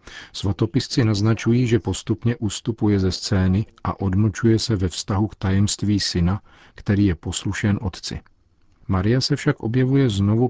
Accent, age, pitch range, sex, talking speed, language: native, 50-69, 90-105 Hz, male, 135 wpm, Czech